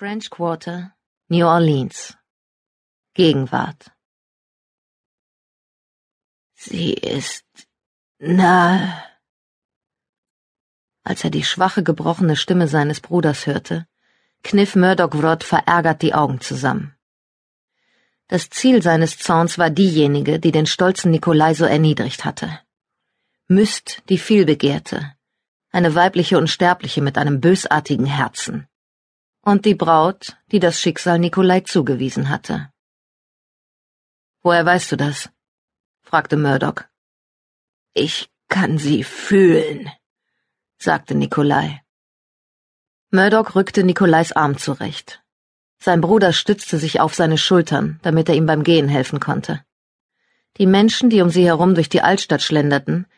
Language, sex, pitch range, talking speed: German, female, 150-185 Hz, 110 wpm